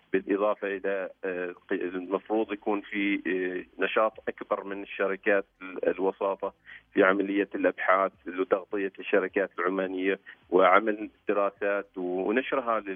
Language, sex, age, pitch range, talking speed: Arabic, male, 40-59, 95-125 Hz, 90 wpm